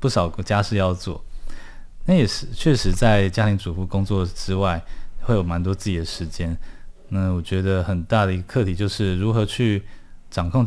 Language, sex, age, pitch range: Chinese, male, 20-39, 90-110 Hz